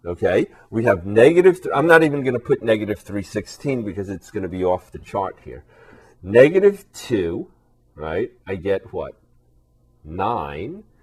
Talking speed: 150 wpm